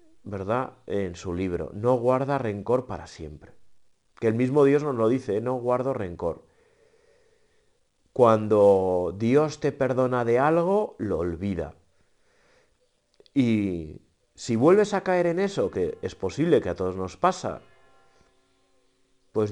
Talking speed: 130 wpm